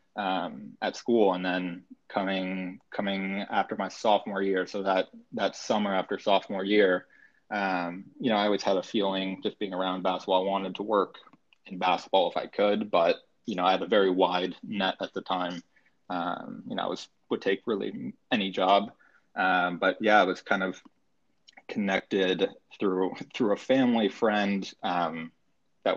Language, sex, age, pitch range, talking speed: English, male, 20-39, 90-100 Hz, 175 wpm